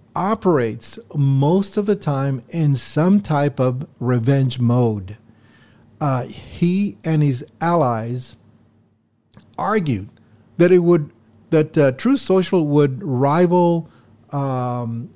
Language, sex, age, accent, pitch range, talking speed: English, male, 40-59, American, 115-160 Hz, 105 wpm